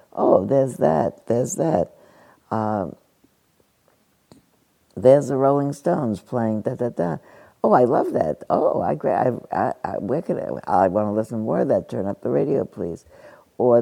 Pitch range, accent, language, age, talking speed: 110-140 Hz, American, English, 60-79, 150 wpm